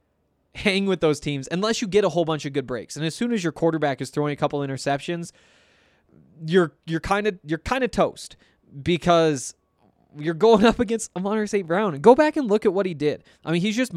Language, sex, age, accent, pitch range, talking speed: English, male, 20-39, American, 145-190 Hz, 230 wpm